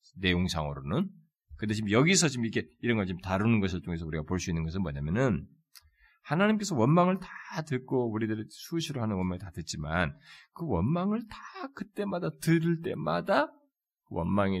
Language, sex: Korean, male